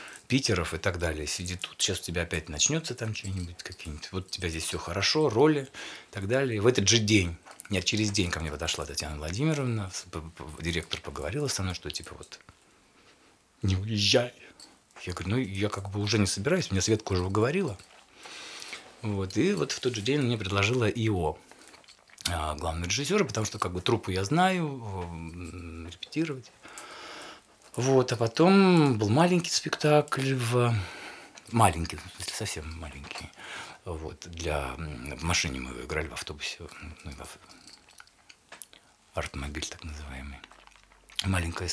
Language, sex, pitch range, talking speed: Russian, male, 85-130 Hz, 150 wpm